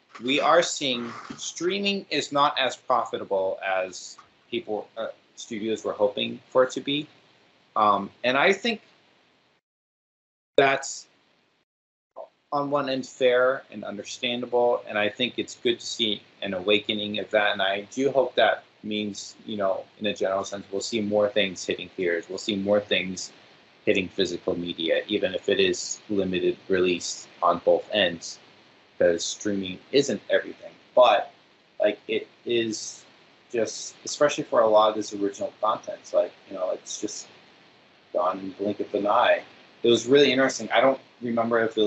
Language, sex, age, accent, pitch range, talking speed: English, male, 30-49, American, 100-130 Hz, 160 wpm